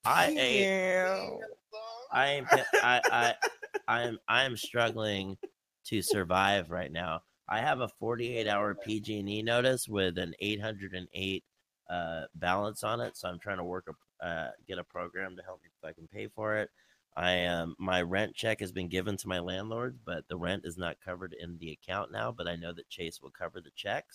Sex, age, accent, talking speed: male, 30-49, American, 190 wpm